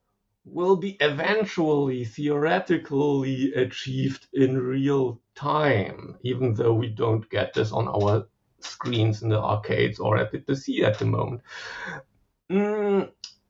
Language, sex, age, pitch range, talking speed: English, male, 50-69, 110-160 Hz, 125 wpm